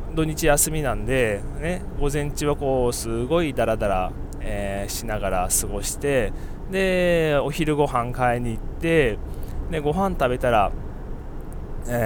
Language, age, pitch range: Japanese, 20-39, 100-150 Hz